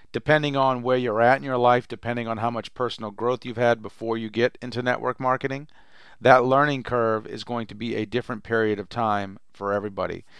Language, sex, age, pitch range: English, male, 40-59, 110-130 Hz